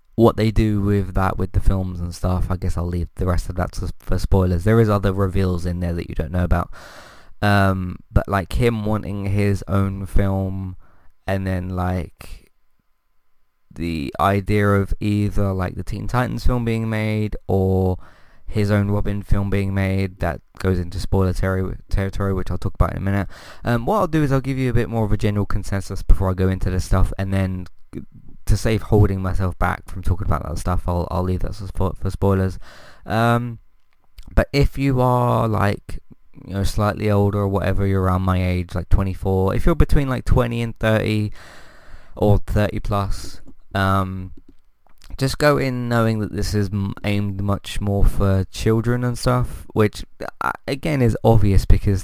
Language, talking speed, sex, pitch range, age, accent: English, 185 wpm, male, 95-110 Hz, 20-39, British